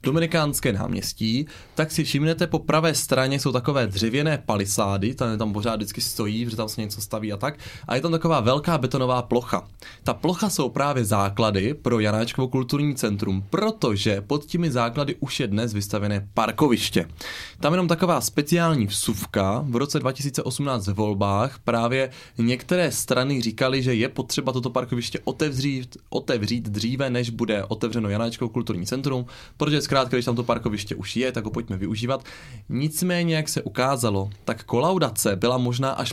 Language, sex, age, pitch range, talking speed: Czech, male, 20-39, 105-135 Hz, 165 wpm